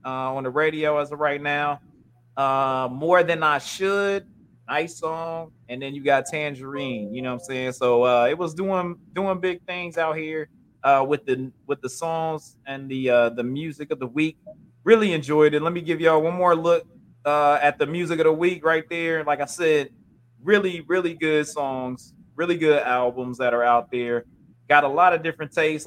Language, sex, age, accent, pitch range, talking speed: English, male, 20-39, American, 130-160 Hz, 205 wpm